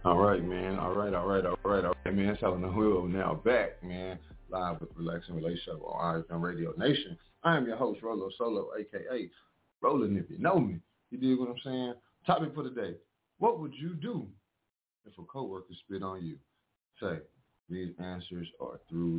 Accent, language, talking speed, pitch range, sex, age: American, English, 195 wpm, 80-95 Hz, male, 30-49